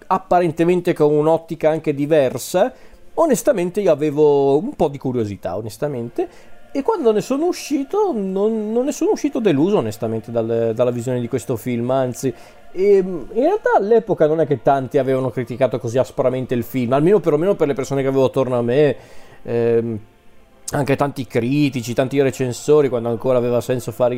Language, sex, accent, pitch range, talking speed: Italian, male, native, 120-175 Hz, 160 wpm